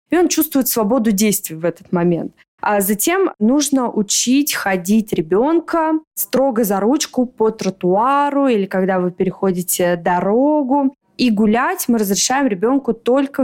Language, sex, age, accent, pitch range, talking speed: Russian, female, 20-39, native, 200-255 Hz, 135 wpm